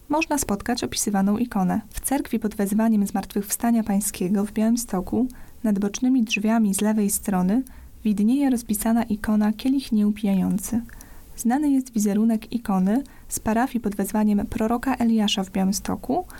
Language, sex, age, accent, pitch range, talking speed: Polish, female, 20-39, native, 205-240 Hz, 130 wpm